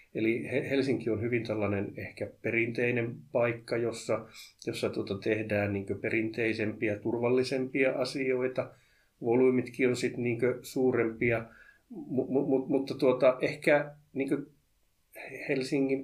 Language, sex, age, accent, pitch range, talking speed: Finnish, male, 30-49, native, 105-130 Hz, 95 wpm